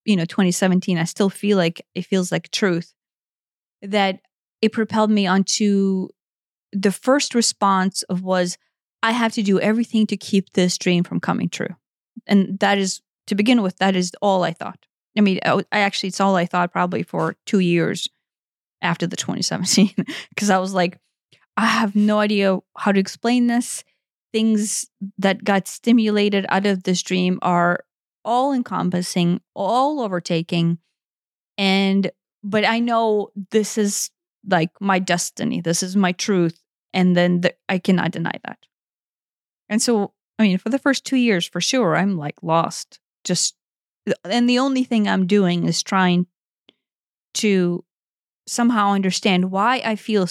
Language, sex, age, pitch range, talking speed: English, female, 20-39, 180-215 Hz, 160 wpm